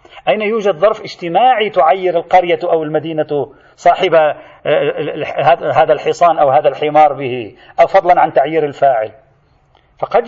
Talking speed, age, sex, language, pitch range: 125 wpm, 40-59, male, Arabic, 160-240 Hz